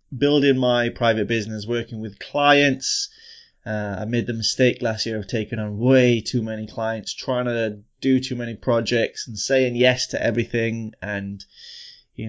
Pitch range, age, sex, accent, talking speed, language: 110-135 Hz, 20-39, male, British, 165 wpm, English